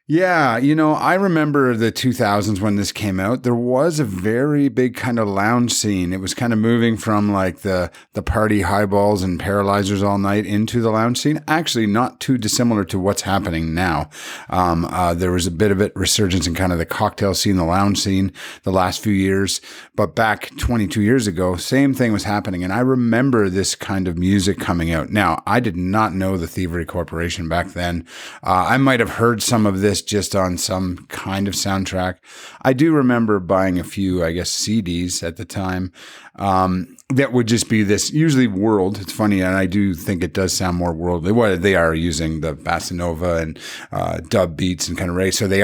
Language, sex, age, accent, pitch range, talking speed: English, male, 30-49, American, 90-115 Hz, 210 wpm